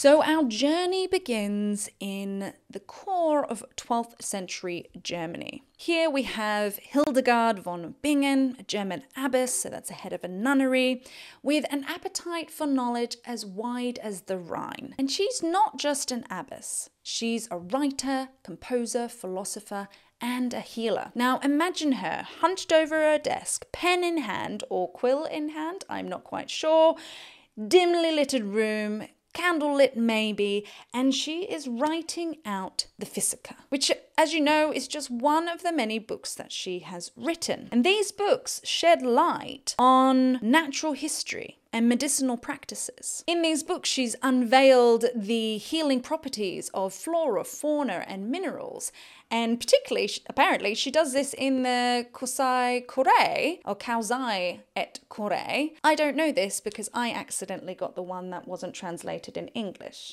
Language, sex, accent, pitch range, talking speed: English, female, British, 215-305 Hz, 150 wpm